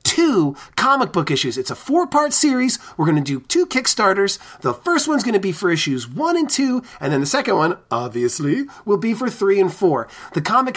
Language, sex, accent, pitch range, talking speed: English, male, American, 165-230 Hz, 215 wpm